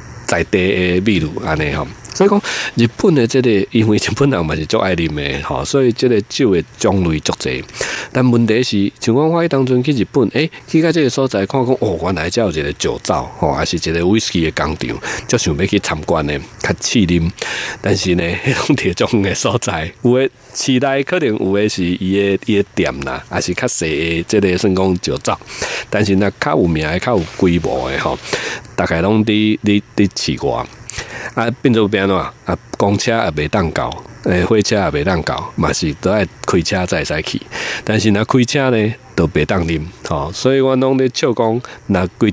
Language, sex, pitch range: Chinese, male, 90-130 Hz